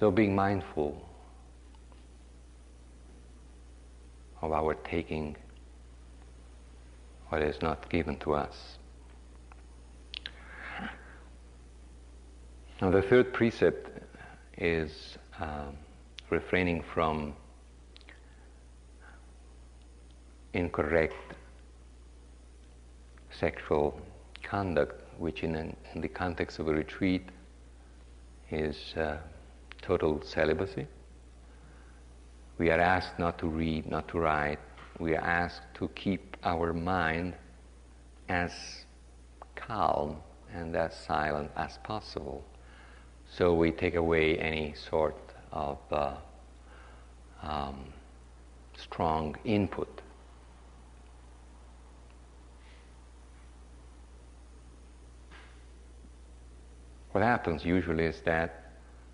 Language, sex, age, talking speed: English, male, 50-69, 75 wpm